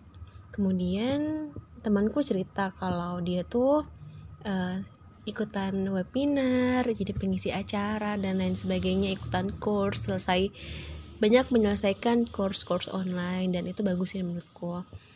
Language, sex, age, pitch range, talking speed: Indonesian, female, 20-39, 185-215 Hz, 110 wpm